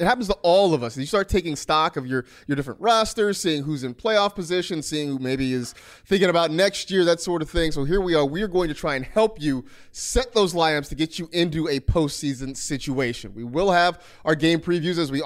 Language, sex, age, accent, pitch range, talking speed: English, male, 30-49, American, 135-195 Hz, 245 wpm